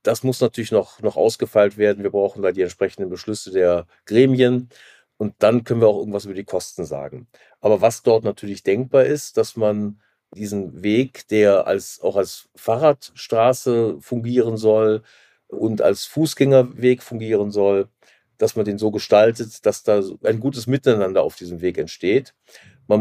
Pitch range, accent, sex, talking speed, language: 105-125 Hz, German, male, 160 wpm, German